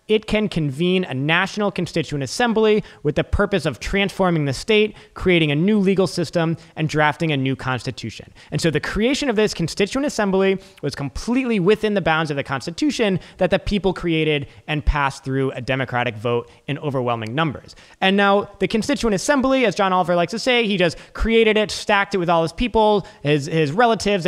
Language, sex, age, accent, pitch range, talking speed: English, male, 20-39, American, 160-205 Hz, 190 wpm